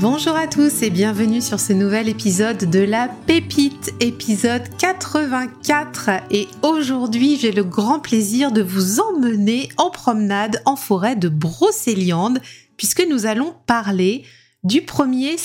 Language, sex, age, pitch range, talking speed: French, female, 30-49, 200-245 Hz, 135 wpm